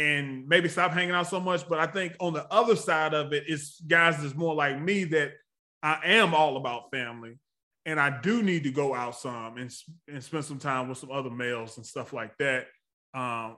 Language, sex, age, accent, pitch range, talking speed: English, male, 20-39, American, 130-165 Hz, 225 wpm